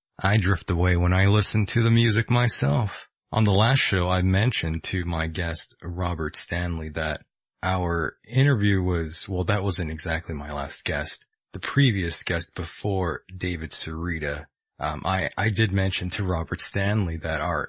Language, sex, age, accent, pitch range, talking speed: English, male, 30-49, American, 85-115 Hz, 155 wpm